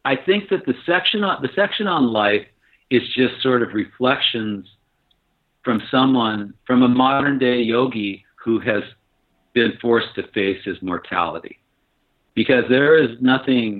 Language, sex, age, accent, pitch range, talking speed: English, male, 50-69, American, 105-130 Hz, 150 wpm